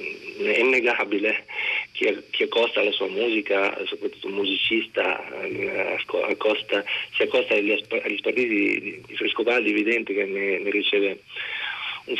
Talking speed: 140 wpm